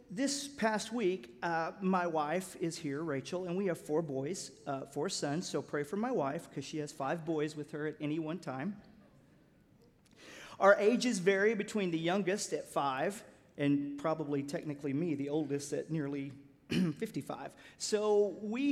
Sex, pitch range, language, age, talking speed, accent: male, 145-205 Hz, English, 40-59, 165 wpm, American